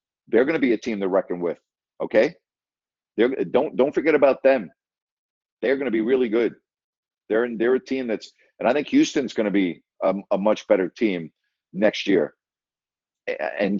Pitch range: 105-165 Hz